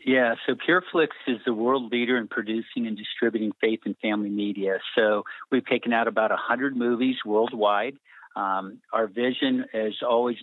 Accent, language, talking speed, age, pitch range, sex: American, English, 160 wpm, 50-69, 105-120 Hz, male